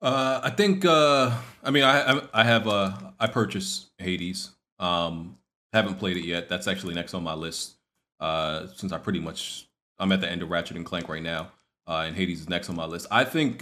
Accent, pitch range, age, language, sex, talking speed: American, 95-120 Hz, 30-49, English, male, 215 wpm